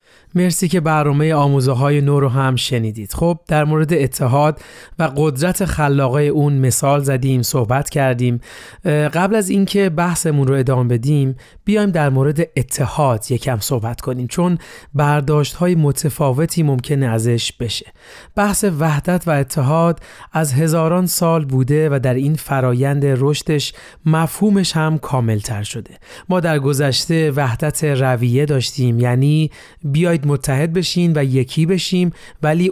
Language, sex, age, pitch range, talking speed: Persian, male, 30-49, 135-165 Hz, 130 wpm